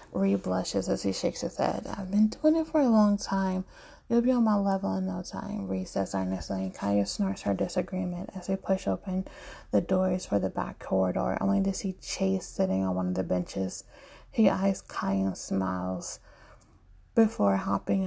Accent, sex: American, female